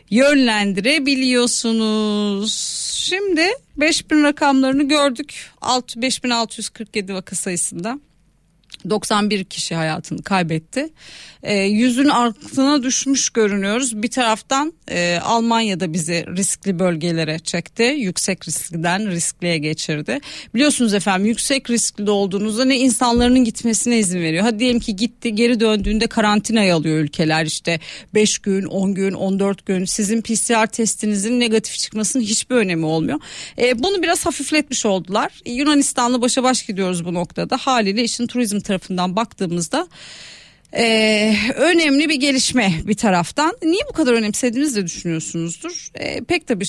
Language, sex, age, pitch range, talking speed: Turkish, female, 40-59, 190-255 Hz, 115 wpm